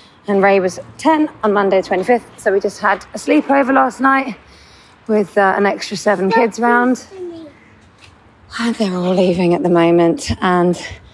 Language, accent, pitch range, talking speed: English, British, 190-235 Hz, 160 wpm